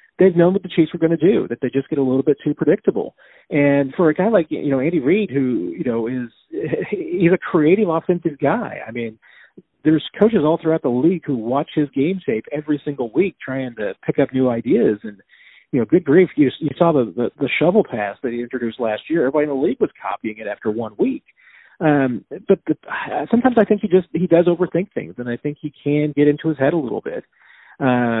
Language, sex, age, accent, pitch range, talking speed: English, male, 40-59, American, 120-165 Hz, 235 wpm